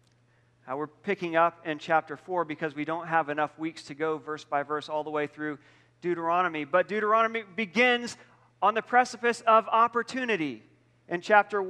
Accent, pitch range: American, 155-225 Hz